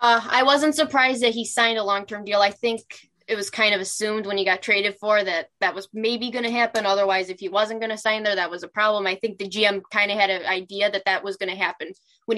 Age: 10-29